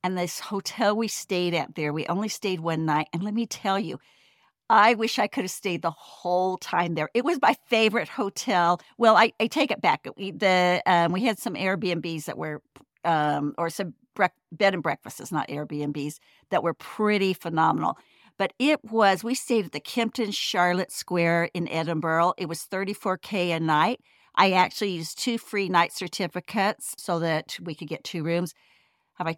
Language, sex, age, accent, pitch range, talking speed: English, female, 50-69, American, 170-210 Hz, 195 wpm